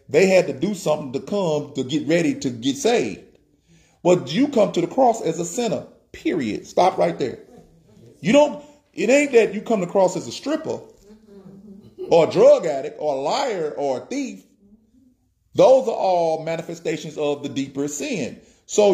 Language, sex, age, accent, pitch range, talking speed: English, male, 40-59, American, 170-245 Hz, 185 wpm